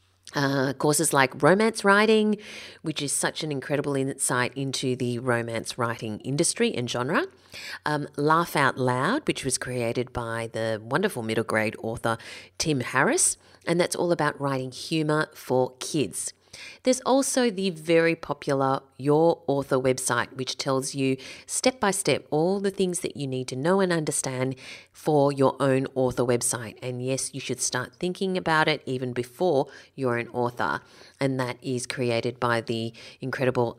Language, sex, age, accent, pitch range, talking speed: English, female, 30-49, Australian, 125-175 Hz, 155 wpm